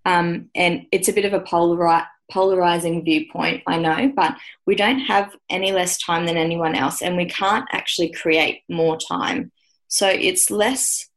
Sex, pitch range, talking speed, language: female, 160-185 Hz, 165 wpm, English